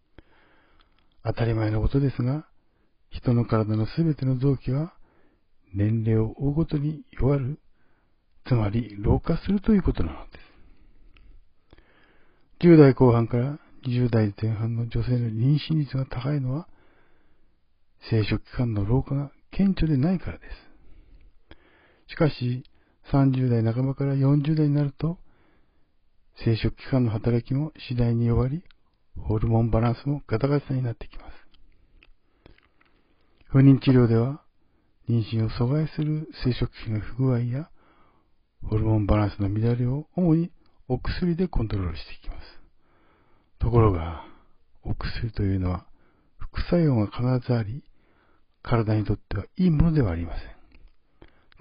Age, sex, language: 60-79, male, Japanese